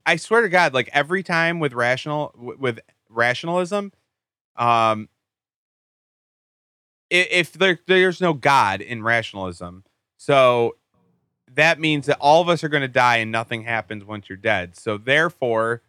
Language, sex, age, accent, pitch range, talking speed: English, male, 30-49, American, 110-145 Hz, 145 wpm